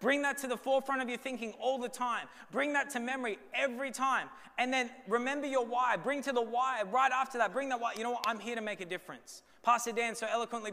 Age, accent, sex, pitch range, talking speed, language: 20-39, Australian, male, 180-240 Hz, 250 wpm, English